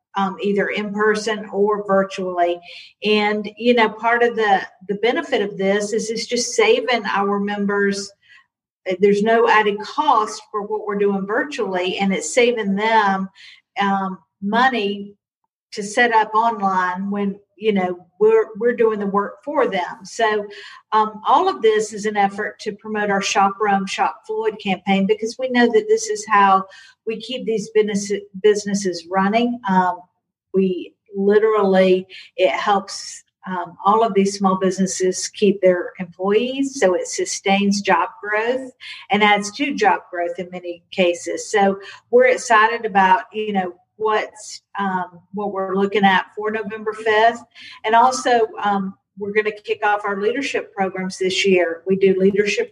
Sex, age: female, 50-69